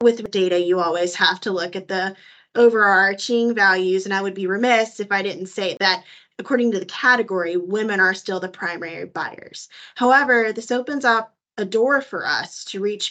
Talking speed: 190 wpm